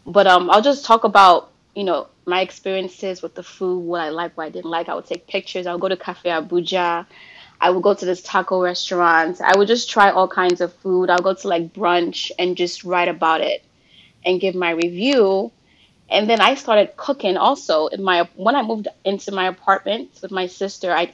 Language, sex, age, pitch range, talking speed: English, female, 20-39, 180-205 Hz, 220 wpm